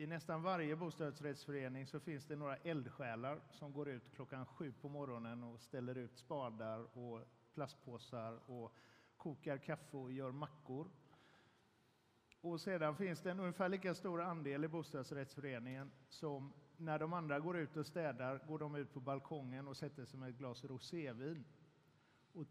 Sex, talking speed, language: male, 160 wpm, Swedish